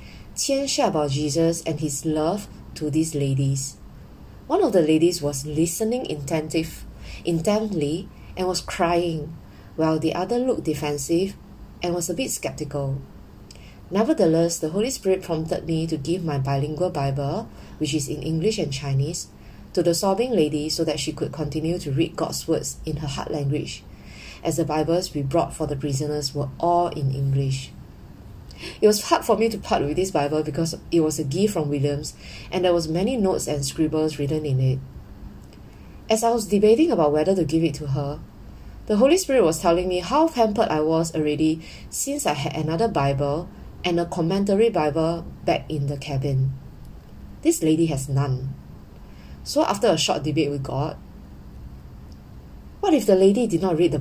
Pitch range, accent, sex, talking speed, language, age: 145-175 Hz, Malaysian, female, 175 wpm, English, 20-39